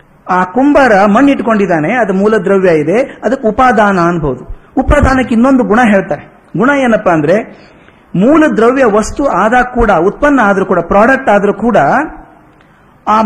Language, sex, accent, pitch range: Kannada, male, native, 195-255 Hz